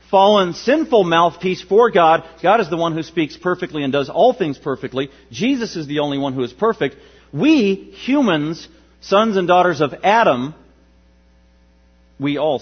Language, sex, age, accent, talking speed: English, male, 40-59, American, 160 wpm